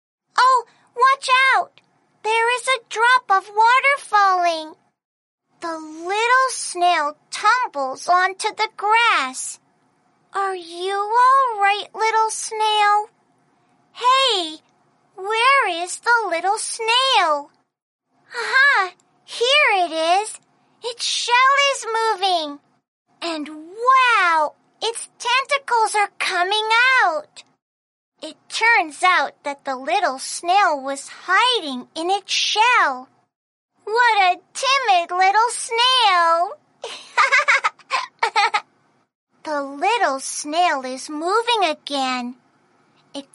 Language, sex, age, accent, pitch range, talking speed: English, female, 40-59, American, 305-450 Hz, 90 wpm